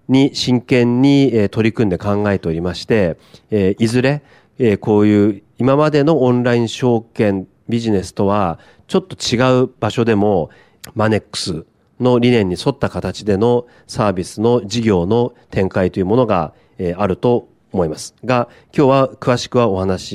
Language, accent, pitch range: Japanese, native, 100-125 Hz